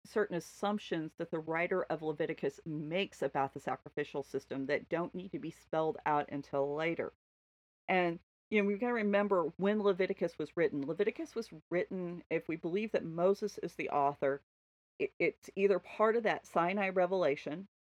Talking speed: 165 wpm